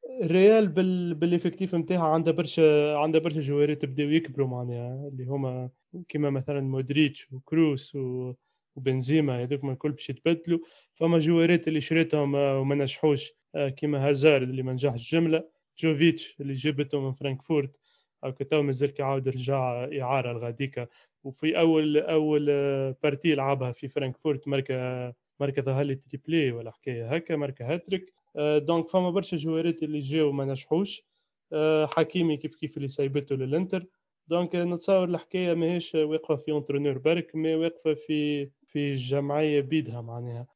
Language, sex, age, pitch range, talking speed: Arabic, male, 20-39, 135-160 Hz, 140 wpm